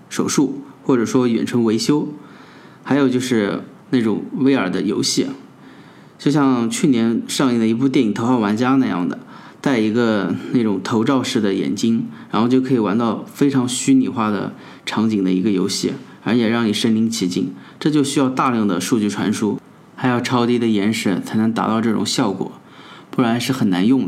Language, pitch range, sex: Chinese, 115-130 Hz, male